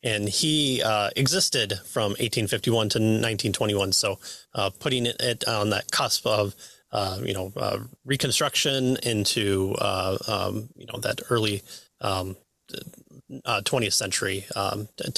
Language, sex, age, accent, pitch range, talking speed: English, male, 30-49, American, 100-120 Hz, 135 wpm